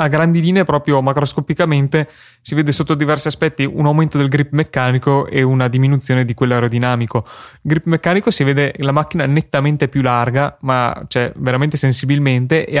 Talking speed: 165 wpm